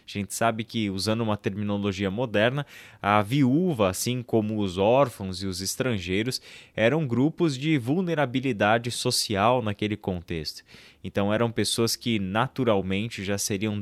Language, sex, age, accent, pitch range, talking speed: Portuguese, male, 20-39, Brazilian, 110-145 Hz, 135 wpm